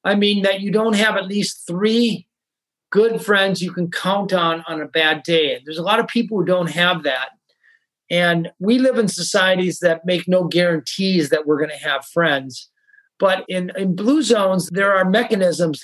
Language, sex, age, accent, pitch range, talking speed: English, male, 50-69, American, 170-215 Hz, 195 wpm